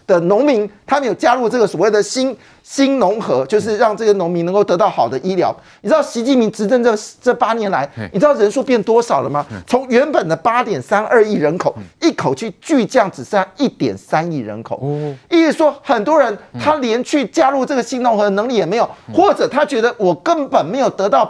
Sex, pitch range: male, 205-290 Hz